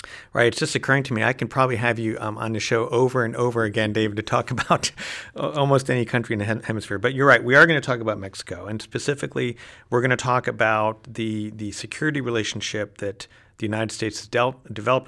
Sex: male